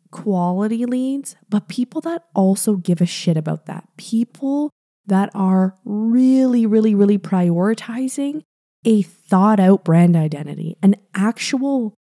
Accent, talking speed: American, 125 wpm